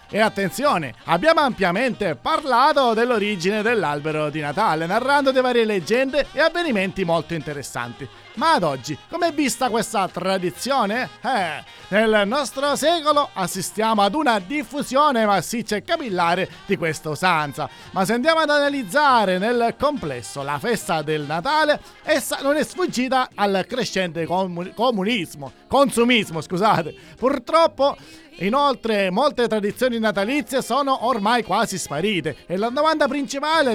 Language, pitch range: Italian, 185-275 Hz